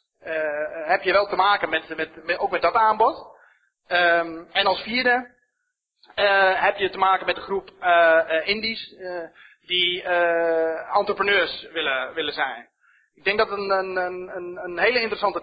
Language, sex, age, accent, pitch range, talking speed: English, male, 30-49, Dutch, 170-200 Hz, 175 wpm